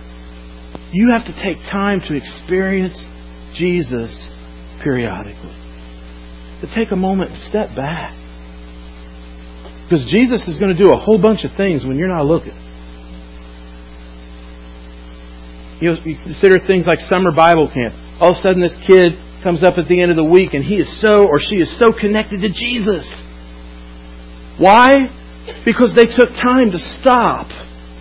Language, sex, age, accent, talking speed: English, male, 50-69, American, 150 wpm